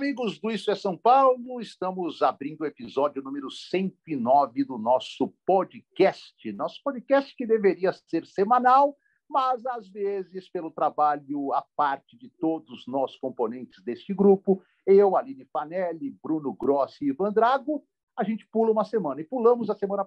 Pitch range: 160-225 Hz